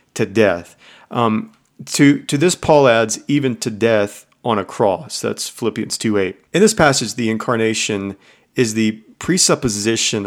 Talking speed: 150 wpm